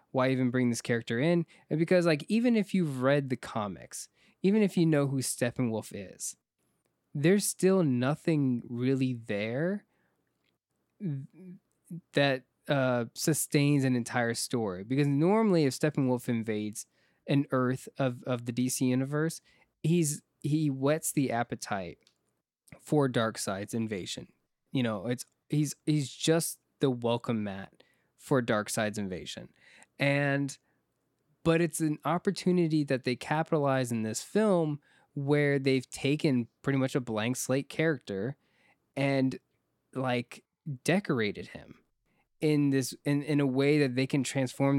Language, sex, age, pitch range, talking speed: English, male, 20-39, 125-155 Hz, 135 wpm